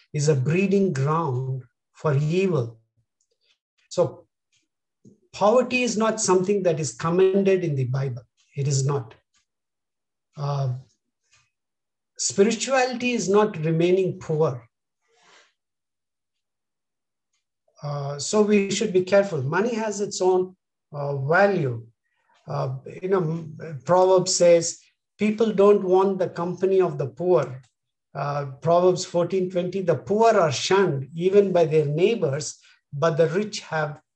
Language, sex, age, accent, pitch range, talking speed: English, male, 50-69, Indian, 150-200 Hz, 115 wpm